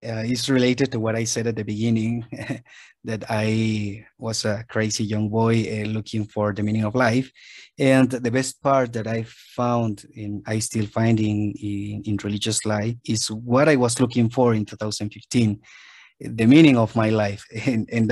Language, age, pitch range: Filipino, 30-49, 105-120 Hz